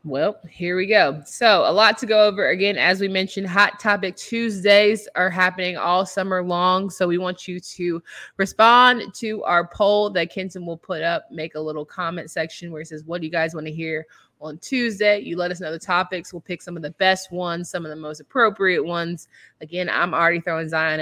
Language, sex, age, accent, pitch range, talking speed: English, female, 20-39, American, 160-205 Hz, 220 wpm